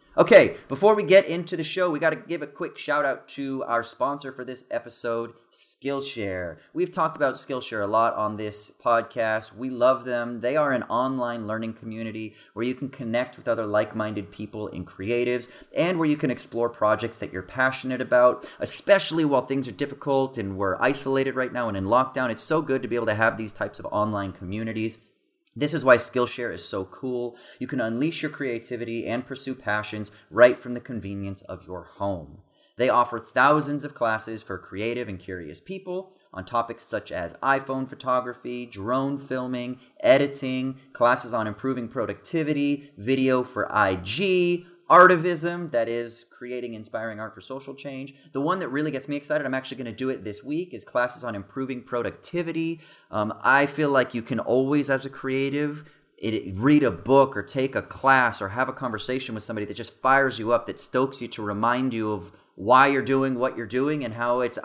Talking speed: 195 wpm